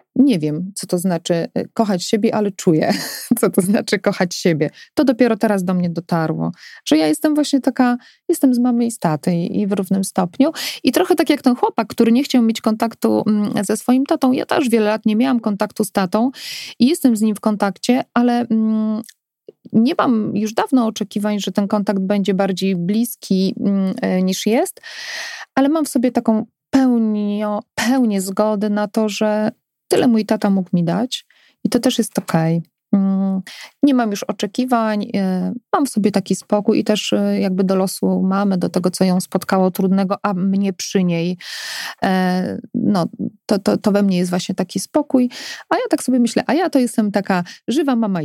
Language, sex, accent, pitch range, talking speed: Polish, female, native, 195-245 Hz, 185 wpm